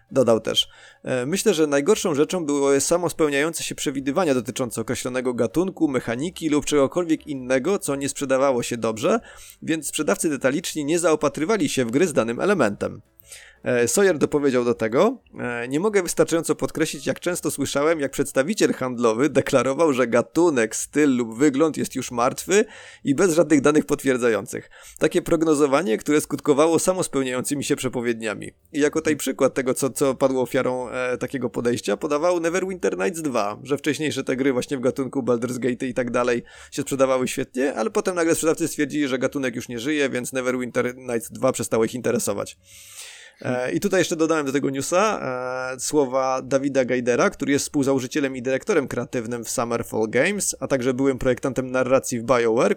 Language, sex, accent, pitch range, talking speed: Polish, male, native, 125-150 Hz, 165 wpm